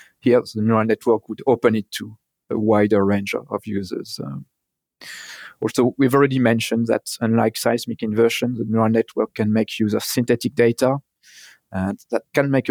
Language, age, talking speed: English, 40-59, 170 wpm